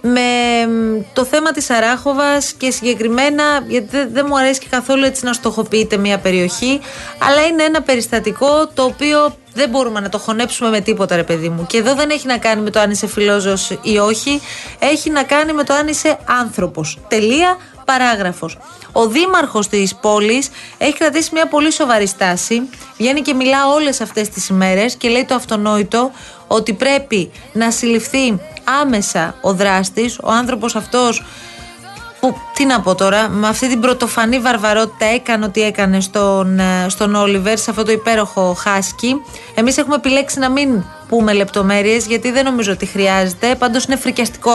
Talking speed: 165 wpm